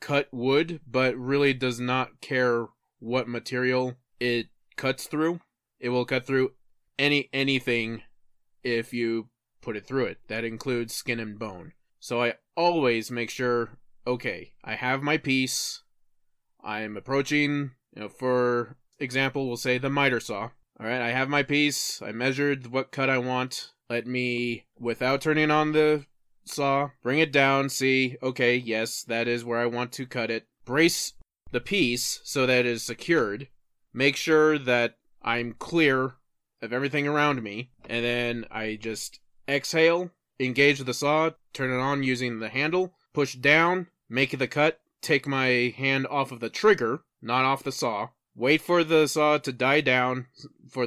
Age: 20-39